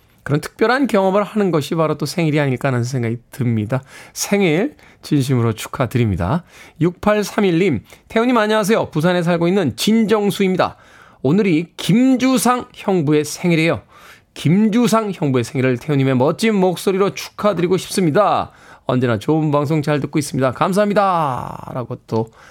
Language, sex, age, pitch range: Korean, male, 20-39, 125-190 Hz